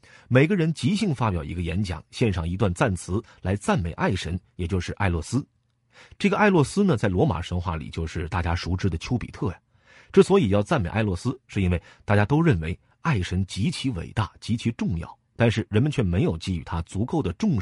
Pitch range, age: 90-130 Hz, 30-49